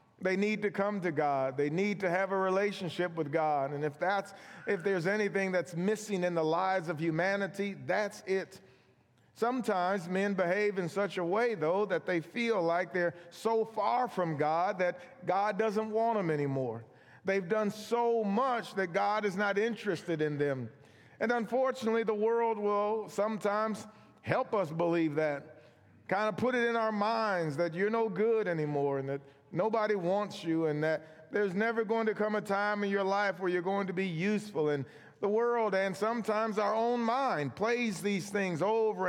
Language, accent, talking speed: English, American, 185 wpm